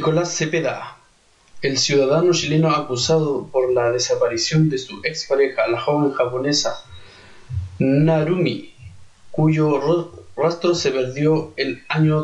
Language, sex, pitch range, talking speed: Spanish, male, 125-155 Hz, 115 wpm